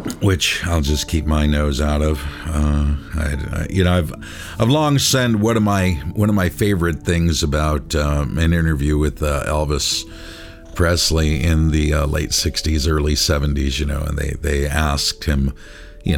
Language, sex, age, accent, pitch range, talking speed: English, male, 50-69, American, 70-85 Hz, 180 wpm